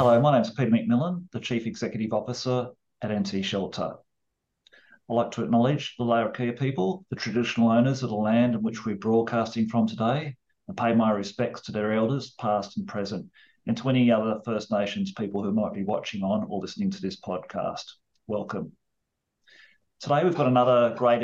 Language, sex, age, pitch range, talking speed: English, male, 40-59, 110-125 Hz, 185 wpm